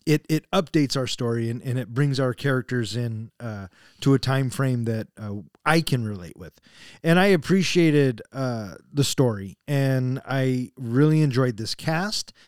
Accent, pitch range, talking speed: American, 125-170 Hz, 170 wpm